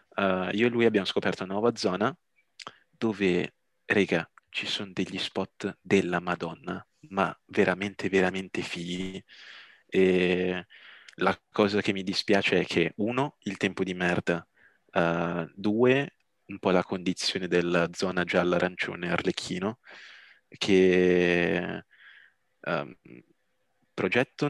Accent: native